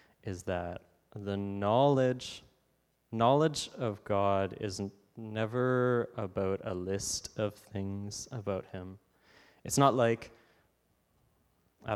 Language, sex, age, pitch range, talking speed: English, male, 20-39, 95-120 Hz, 105 wpm